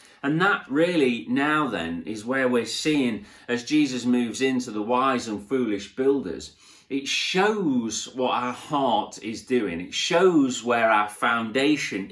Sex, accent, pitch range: male, British, 95-135 Hz